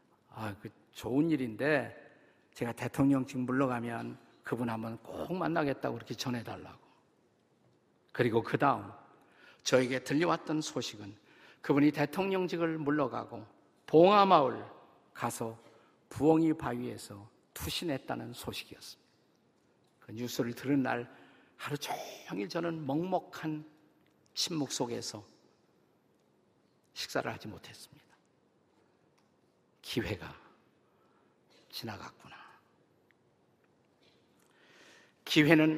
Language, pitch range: Korean, 125-175 Hz